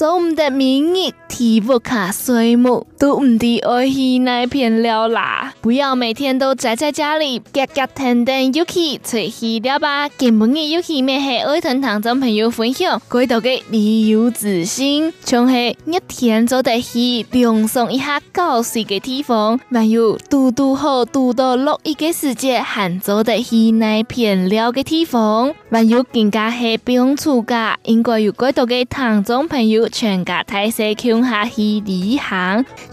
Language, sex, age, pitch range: Chinese, female, 20-39, 220-265 Hz